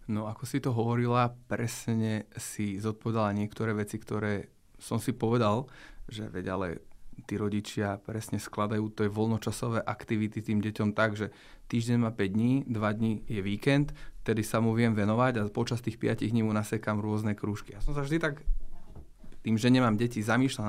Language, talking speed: Slovak, 175 wpm